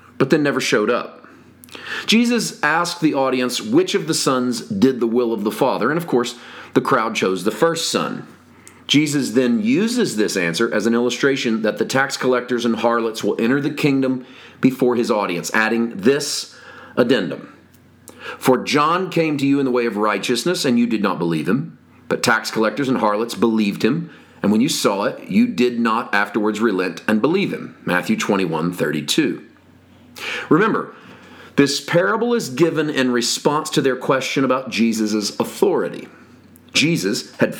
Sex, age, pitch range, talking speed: male, 40-59, 115-150 Hz, 170 wpm